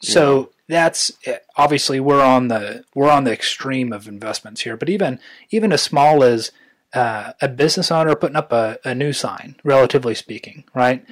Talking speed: 180 wpm